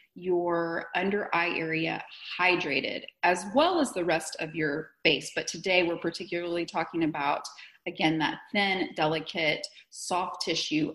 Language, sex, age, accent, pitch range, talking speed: English, female, 30-49, American, 175-220 Hz, 135 wpm